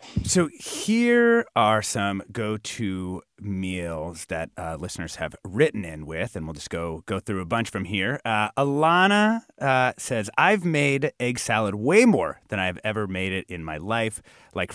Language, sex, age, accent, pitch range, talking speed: English, male, 30-49, American, 95-145 Hz, 170 wpm